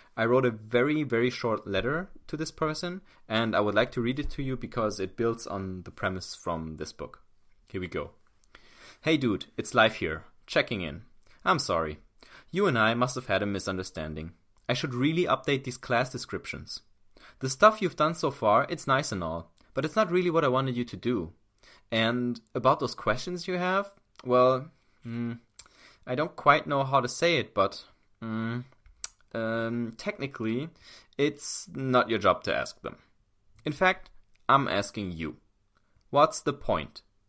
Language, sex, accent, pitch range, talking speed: English, male, German, 105-145 Hz, 175 wpm